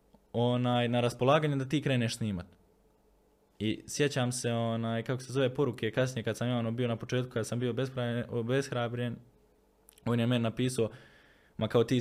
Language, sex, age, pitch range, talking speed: Croatian, male, 20-39, 105-125 Hz, 165 wpm